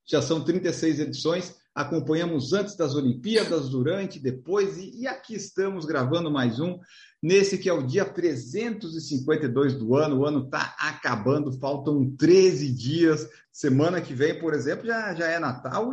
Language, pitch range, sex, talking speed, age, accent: Portuguese, 150-200 Hz, male, 150 wpm, 50-69, Brazilian